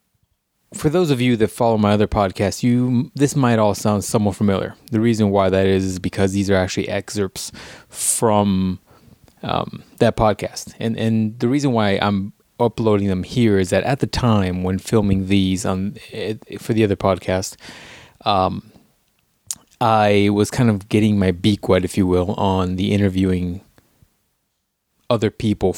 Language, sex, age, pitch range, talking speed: English, male, 20-39, 95-110 Hz, 165 wpm